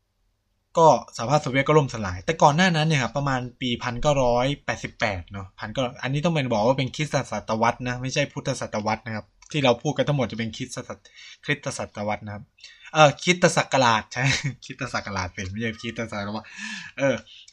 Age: 20-39